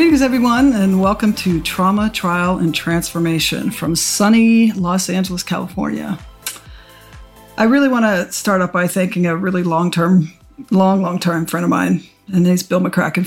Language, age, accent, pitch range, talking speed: English, 50-69, American, 180-205 Hz, 160 wpm